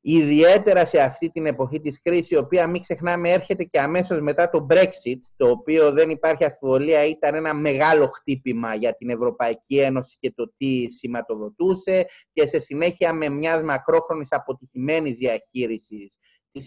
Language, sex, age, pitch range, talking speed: Greek, male, 30-49, 130-180 Hz, 155 wpm